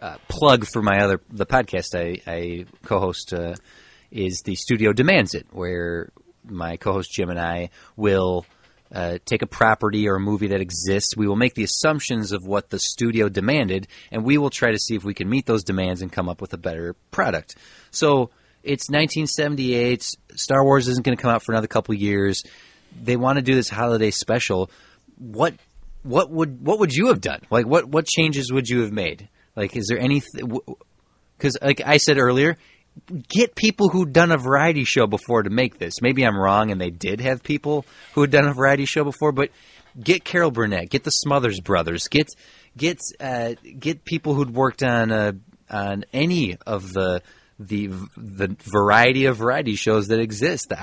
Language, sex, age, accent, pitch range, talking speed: English, male, 30-49, American, 95-140 Hz, 195 wpm